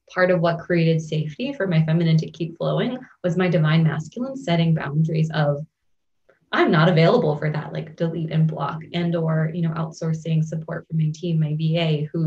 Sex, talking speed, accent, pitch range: female, 190 wpm, American, 160-180 Hz